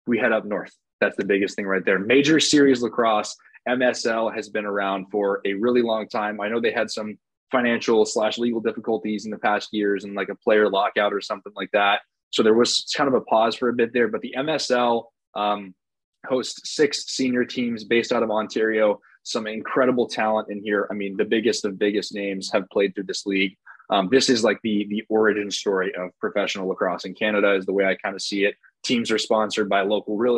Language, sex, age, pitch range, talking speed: English, male, 20-39, 100-115 Hz, 220 wpm